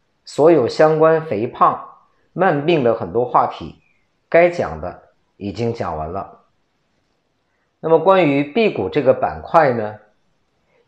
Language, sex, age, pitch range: Chinese, male, 50-69, 115-160 Hz